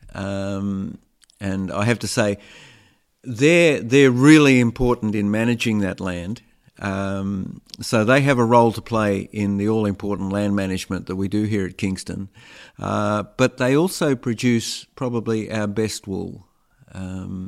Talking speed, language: 150 wpm, English